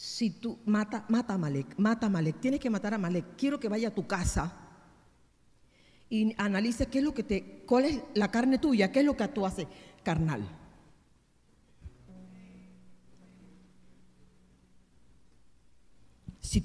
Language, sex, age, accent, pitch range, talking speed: Spanish, female, 50-69, American, 160-230 Hz, 145 wpm